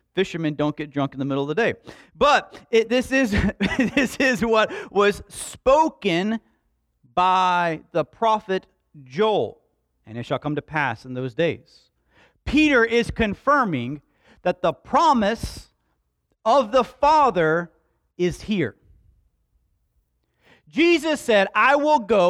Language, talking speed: English, 125 wpm